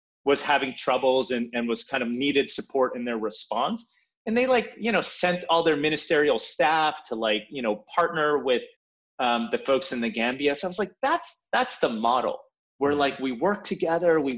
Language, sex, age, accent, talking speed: English, male, 30-49, American, 205 wpm